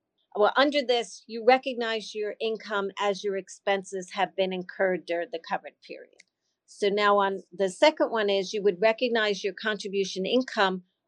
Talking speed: 160 wpm